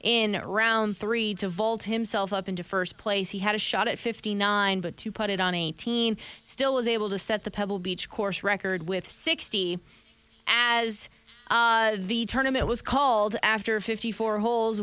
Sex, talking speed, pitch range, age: female, 170 wpm, 190-225 Hz, 20-39